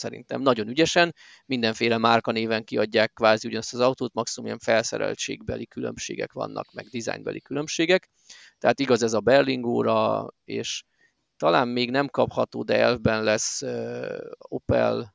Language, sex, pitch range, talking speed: Hungarian, male, 115-160 Hz, 125 wpm